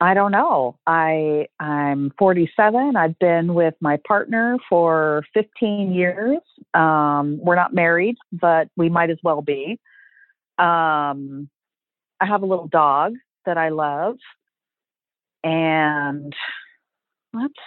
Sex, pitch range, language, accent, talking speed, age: female, 155-210 Hz, English, American, 120 wpm, 40-59